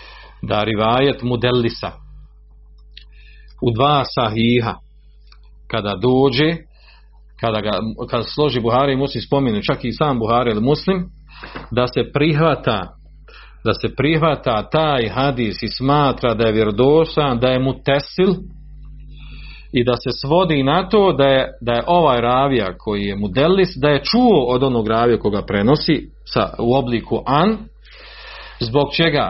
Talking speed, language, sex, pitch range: 135 wpm, Croatian, male, 110-150 Hz